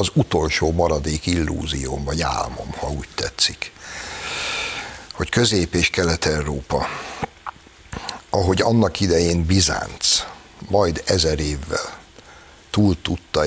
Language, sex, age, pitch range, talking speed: Hungarian, male, 60-79, 75-95 Hz, 100 wpm